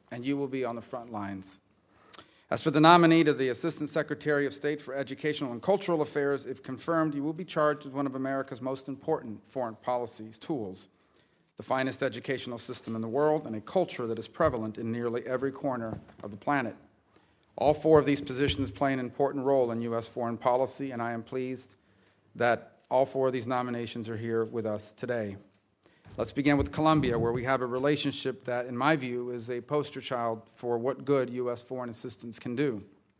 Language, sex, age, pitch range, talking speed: English, male, 40-59, 120-140 Hz, 200 wpm